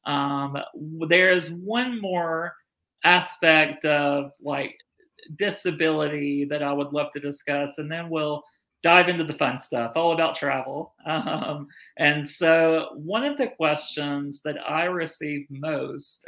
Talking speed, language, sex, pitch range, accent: 135 wpm, English, male, 145-175 Hz, American